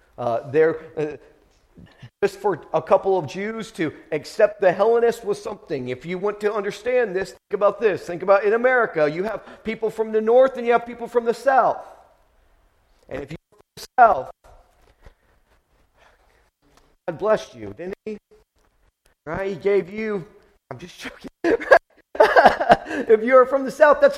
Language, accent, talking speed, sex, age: English, American, 160 wpm, male, 40-59